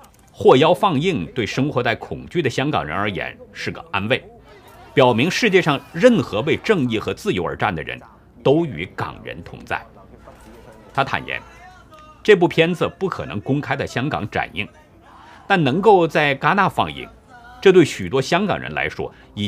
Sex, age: male, 50-69